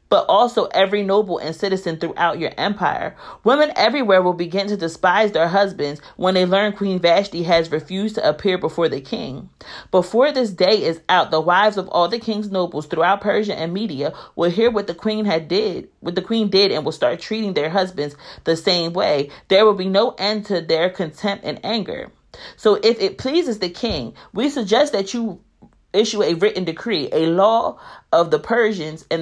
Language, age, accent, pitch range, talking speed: English, 40-59, American, 170-215 Hz, 195 wpm